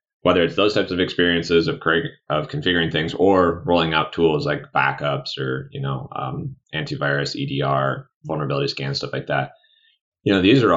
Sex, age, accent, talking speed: male, 20-39, American, 175 wpm